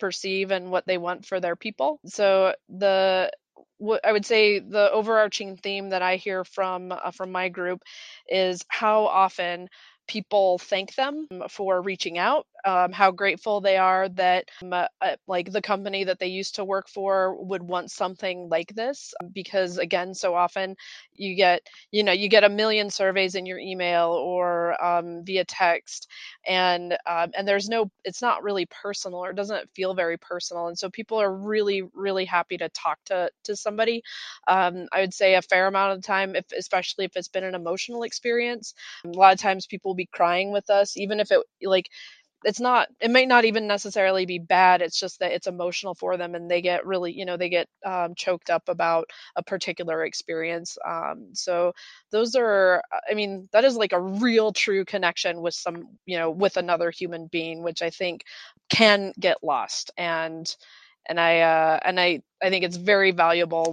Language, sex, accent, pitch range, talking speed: English, female, American, 175-205 Hz, 190 wpm